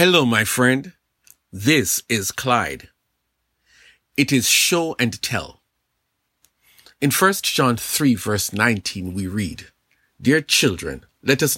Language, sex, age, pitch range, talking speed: English, male, 50-69, 95-135 Hz, 120 wpm